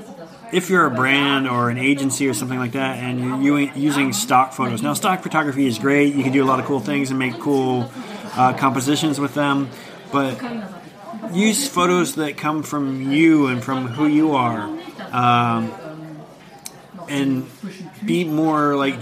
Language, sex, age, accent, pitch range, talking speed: German, male, 30-49, American, 130-155 Hz, 165 wpm